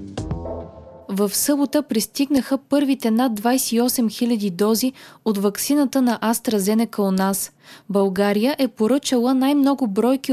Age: 20-39